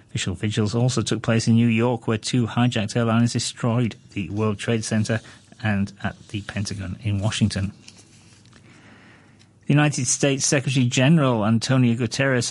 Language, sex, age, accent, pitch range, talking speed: English, male, 40-59, British, 110-150 Hz, 145 wpm